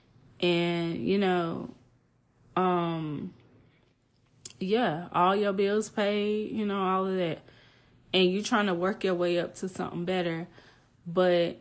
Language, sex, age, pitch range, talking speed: English, female, 20-39, 165-195 Hz, 135 wpm